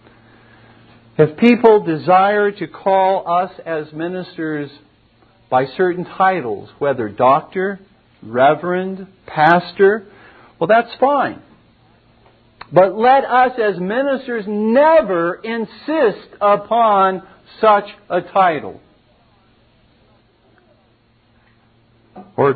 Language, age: English, 50-69